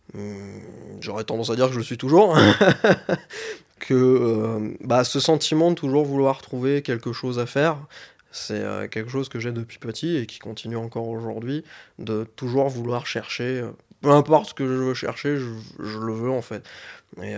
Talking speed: 185 wpm